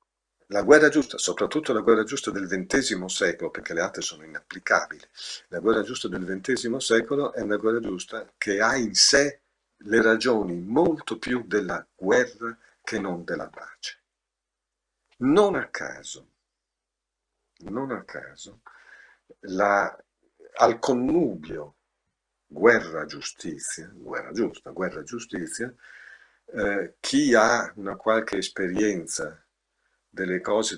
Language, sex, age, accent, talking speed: Italian, male, 50-69, native, 120 wpm